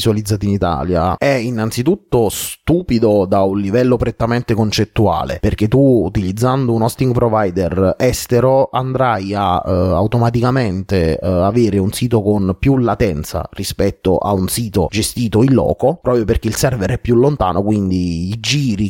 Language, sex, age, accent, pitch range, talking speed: Italian, male, 30-49, native, 100-125 Hz, 145 wpm